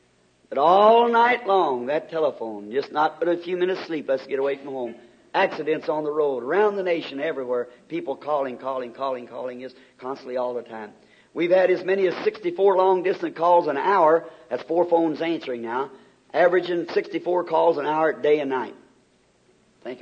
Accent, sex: American, male